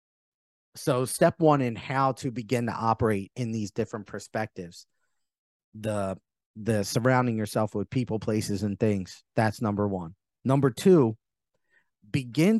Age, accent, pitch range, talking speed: 30-49, American, 105-145 Hz, 135 wpm